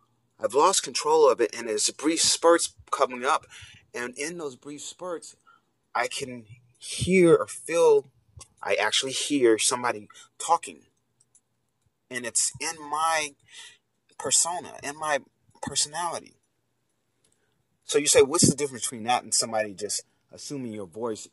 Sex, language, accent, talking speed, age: male, English, American, 135 wpm, 30-49